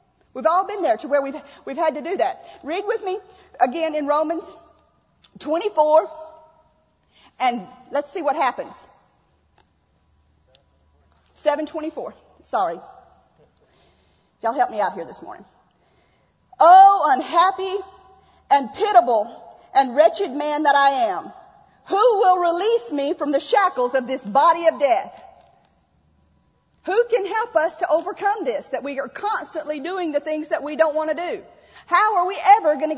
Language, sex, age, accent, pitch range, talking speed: English, female, 40-59, American, 295-405 Hz, 145 wpm